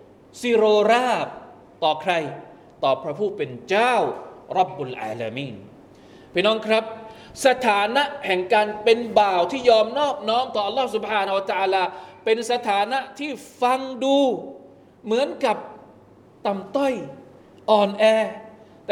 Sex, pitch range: male, 205-270 Hz